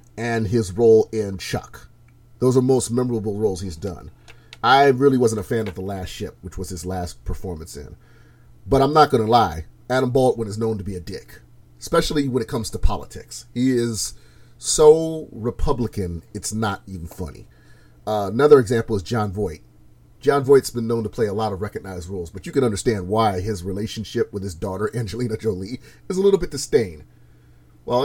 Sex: male